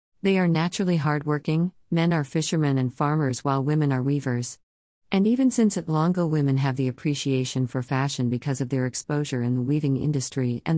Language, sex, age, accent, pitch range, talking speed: English, female, 50-69, American, 125-165 Hz, 190 wpm